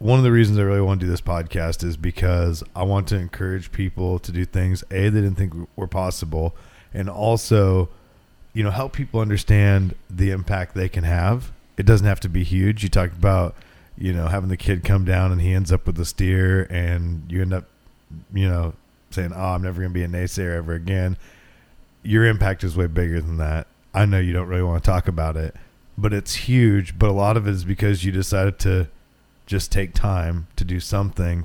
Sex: male